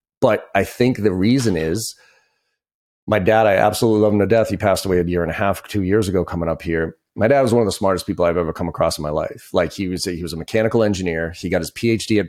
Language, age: English, 30-49